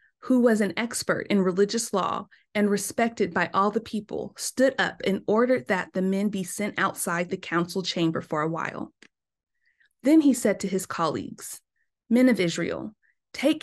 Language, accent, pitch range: English, American, 190-240 Hz